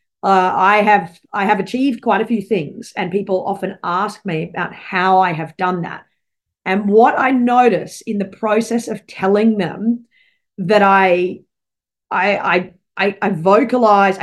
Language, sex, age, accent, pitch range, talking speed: English, female, 30-49, Australian, 185-220 Hz, 155 wpm